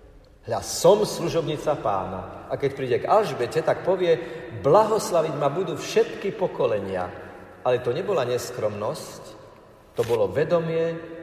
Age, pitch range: 50-69, 110-160 Hz